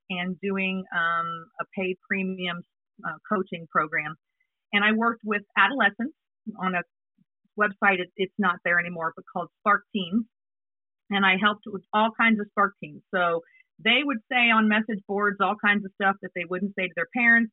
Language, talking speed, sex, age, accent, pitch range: English, 180 wpm, female, 40-59, American, 185-230 Hz